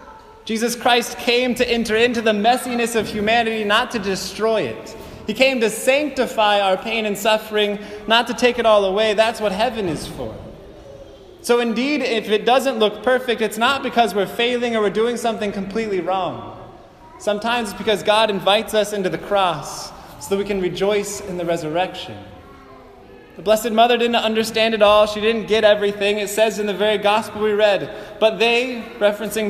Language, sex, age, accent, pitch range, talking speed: English, male, 20-39, American, 190-230 Hz, 185 wpm